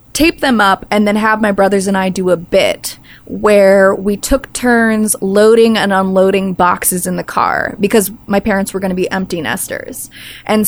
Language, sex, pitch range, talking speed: English, female, 195-260 Hz, 190 wpm